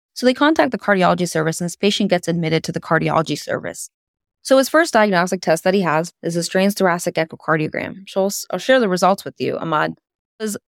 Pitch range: 170-205 Hz